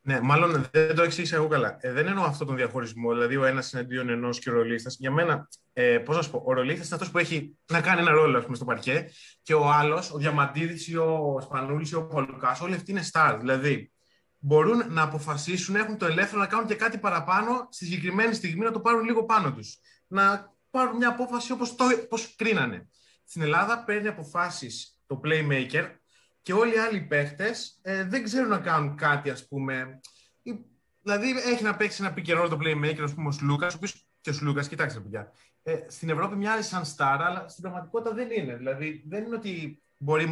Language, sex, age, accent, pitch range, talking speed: Greek, male, 20-39, native, 140-195 Hz, 200 wpm